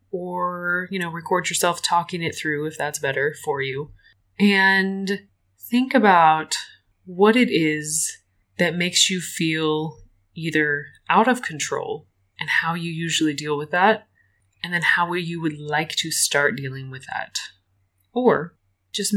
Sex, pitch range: female, 140-180 Hz